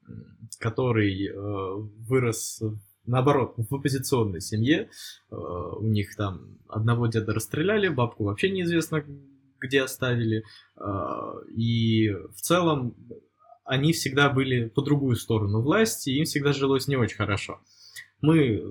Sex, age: male, 20-39